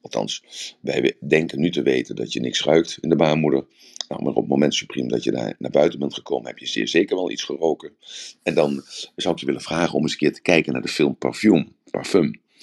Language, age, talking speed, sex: Dutch, 50-69, 240 wpm, male